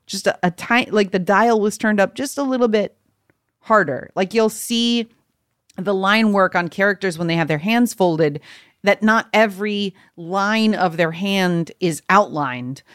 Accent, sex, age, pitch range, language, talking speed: American, female, 40-59, 170-220 Hz, English, 175 wpm